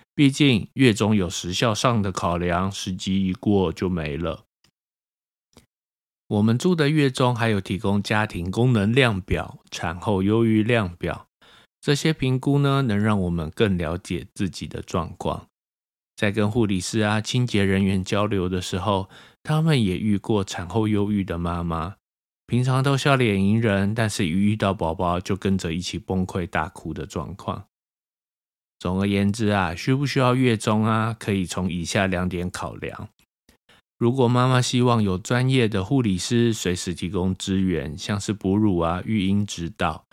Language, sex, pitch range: Chinese, male, 90-115 Hz